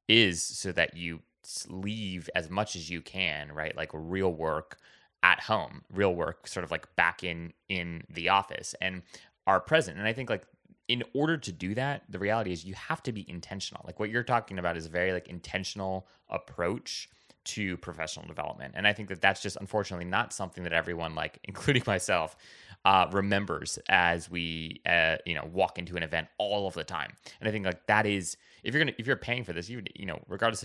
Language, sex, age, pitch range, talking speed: English, male, 20-39, 85-110 Hz, 215 wpm